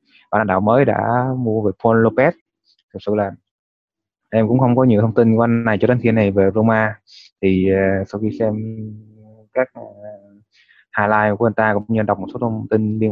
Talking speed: 215 wpm